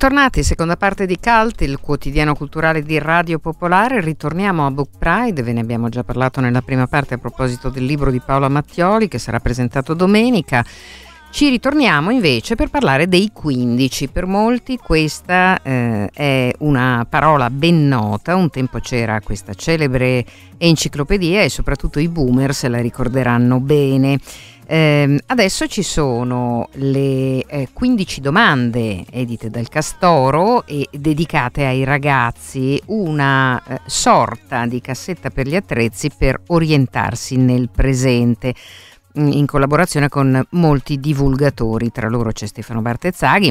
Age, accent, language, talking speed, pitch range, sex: 50-69, native, Italian, 140 wpm, 125-165 Hz, female